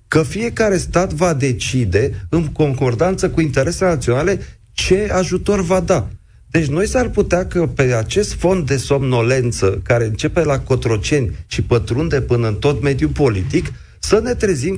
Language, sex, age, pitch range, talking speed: Romanian, male, 40-59, 115-160 Hz, 155 wpm